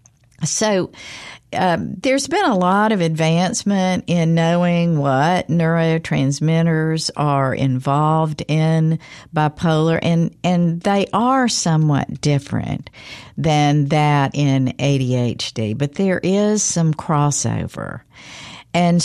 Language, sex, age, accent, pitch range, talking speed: English, female, 60-79, American, 135-165 Hz, 100 wpm